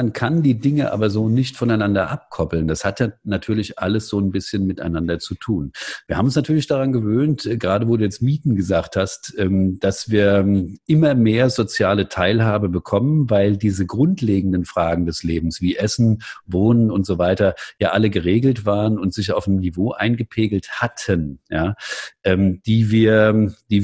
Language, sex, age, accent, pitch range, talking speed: German, male, 50-69, German, 95-120 Hz, 160 wpm